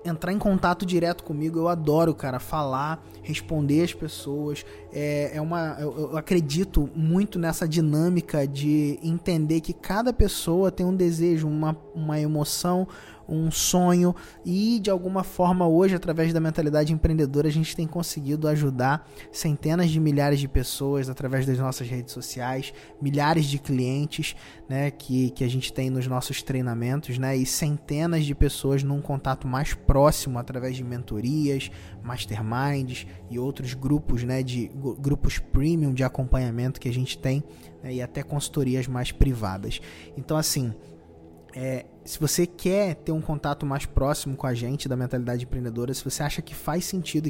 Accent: Brazilian